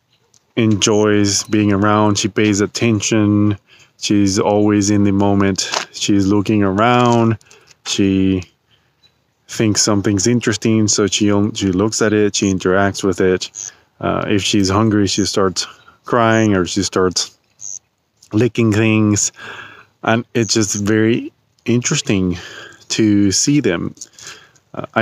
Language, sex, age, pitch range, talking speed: English, male, 20-39, 95-110 Hz, 120 wpm